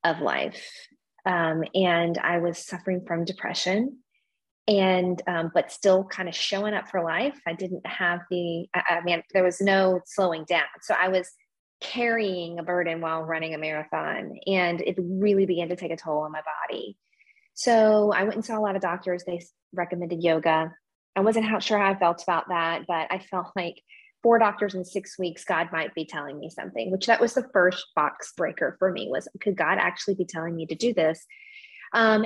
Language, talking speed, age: English, 200 wpm, 20-39